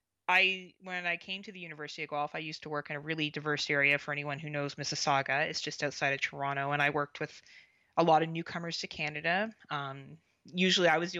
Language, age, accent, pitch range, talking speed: English, 20-39, American, 150-180 Hz, 230 wpm